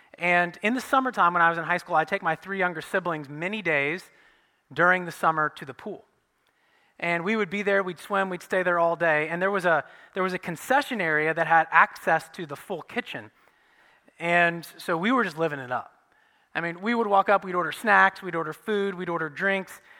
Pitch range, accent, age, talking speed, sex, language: 170-235 Hz, American, 30-49, 220 wpm, male, English